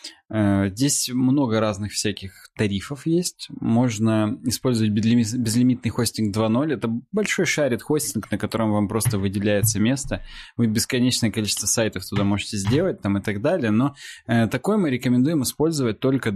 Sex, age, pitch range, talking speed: male, 20-39, 105-125 Hz, 135 wpm